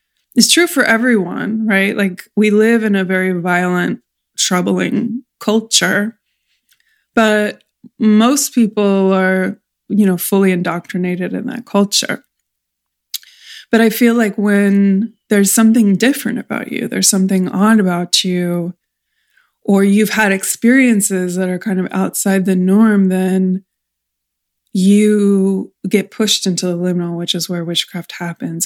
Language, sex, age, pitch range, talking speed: English, female, 20-39, 185-225 Hz, 130 wpm